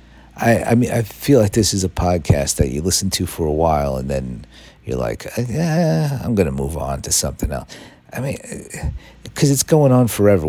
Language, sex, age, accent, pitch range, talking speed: English, male, 50-69, American, 85-105 Hz, 210 wpm